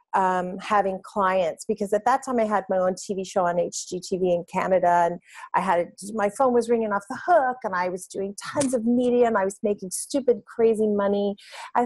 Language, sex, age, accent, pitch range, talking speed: English, female, 40-59, American, 185-255 Hz, 210 wpm